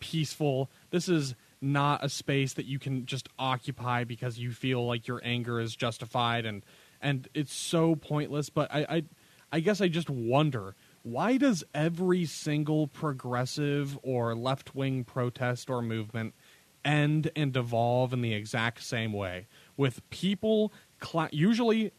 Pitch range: 130-170 Hz